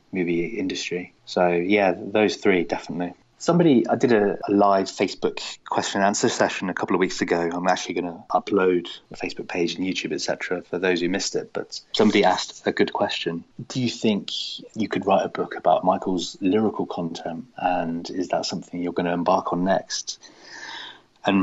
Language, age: English, 30-49